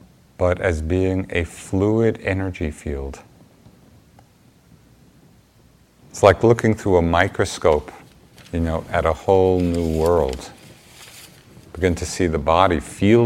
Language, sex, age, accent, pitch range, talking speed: English, male, 50-69, American, 80-100 Hz, 120 wpm